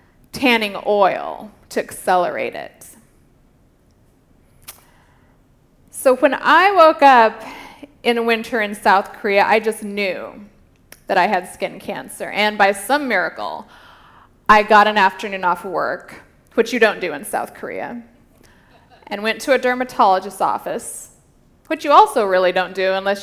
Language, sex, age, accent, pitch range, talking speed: English, female, 20-39, American, 205-255 Hz, 135 wpm